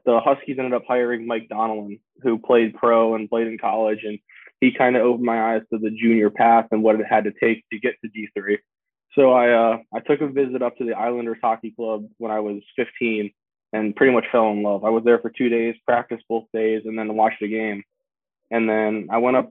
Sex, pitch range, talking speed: male, 110-120 Hz, 235 wpm